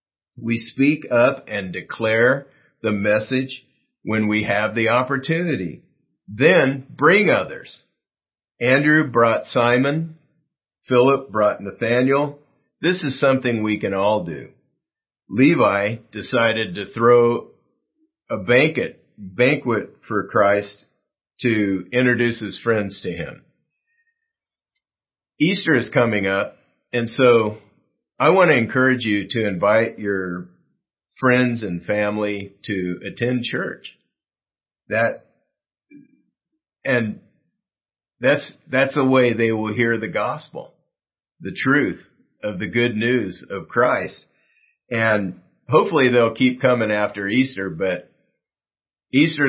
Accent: American